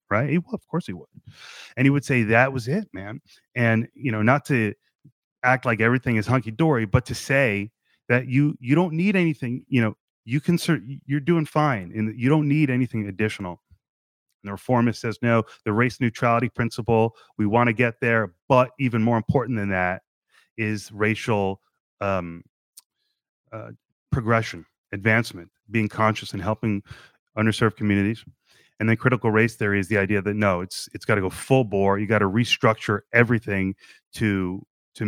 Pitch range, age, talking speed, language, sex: 100-125 Hz, 30-49, 175 wpm, English, male